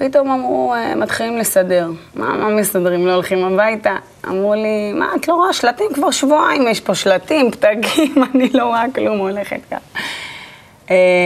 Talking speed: 150 wpm